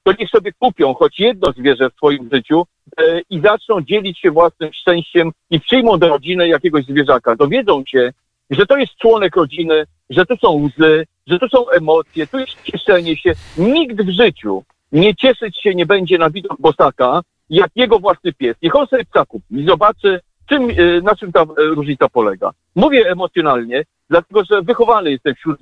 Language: Polish